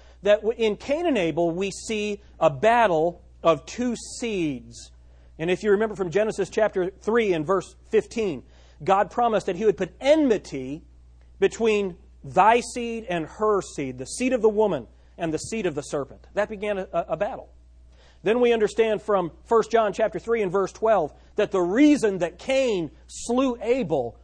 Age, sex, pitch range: 40-59, male, 155-220 Hz